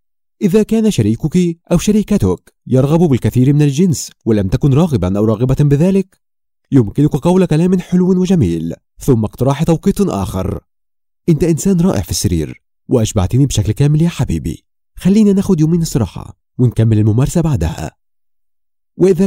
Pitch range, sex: 105-170 Hz, male